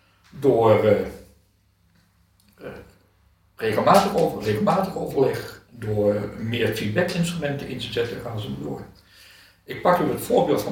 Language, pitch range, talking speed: Dutch, 95-140 Hz, 135 wpm